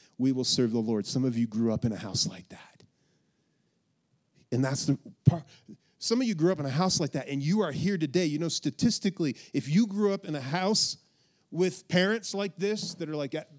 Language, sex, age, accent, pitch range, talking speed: English, male, 30-49, American, 135-180 Hz, 225 wpm